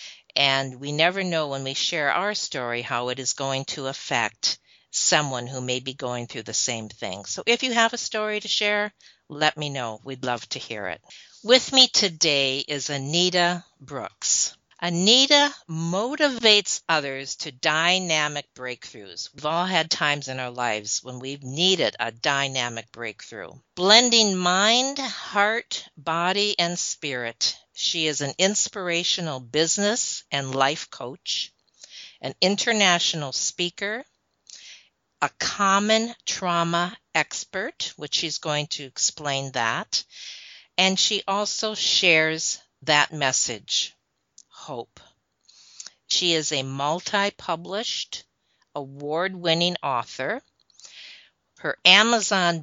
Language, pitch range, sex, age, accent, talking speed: English, 135-195 Hz, female, 50-69, American, 120 wpm